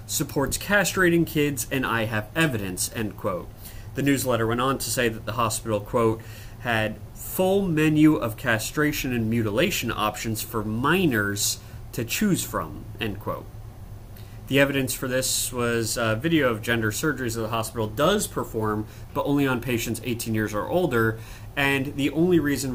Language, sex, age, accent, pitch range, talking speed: English, male, 30-49, American, 110-130 Hz, 160 wpm